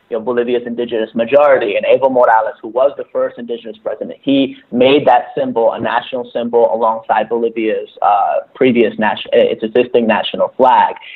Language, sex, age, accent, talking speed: English, male, 30-49, American, 160 wpm